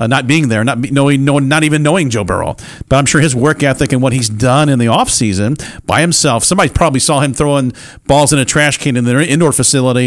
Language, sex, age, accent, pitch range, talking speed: English, male, 40-59, American, 120-150 Hz, 250 wpm